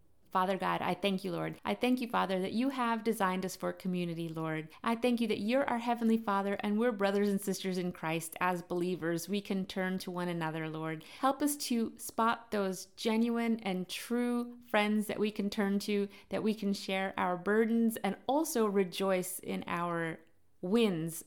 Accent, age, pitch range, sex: American, 30-49, 180-220 Hz, female